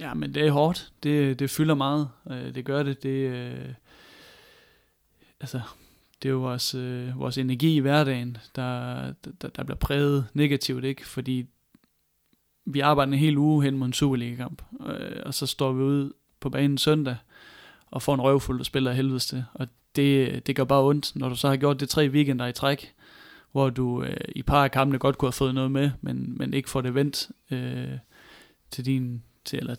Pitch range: 125-140 Hz